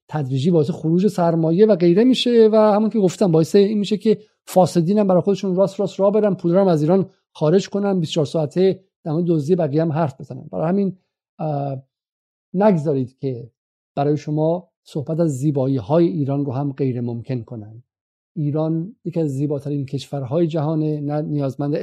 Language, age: Persian, 50-69